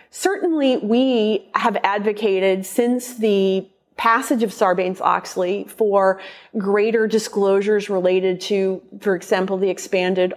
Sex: female